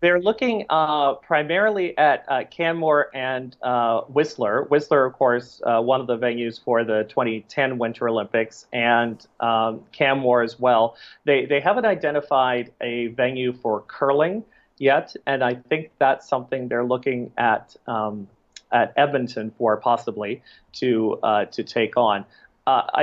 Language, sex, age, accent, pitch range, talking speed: English, male, 40-59, American, 120-150 Hz, 140 wpm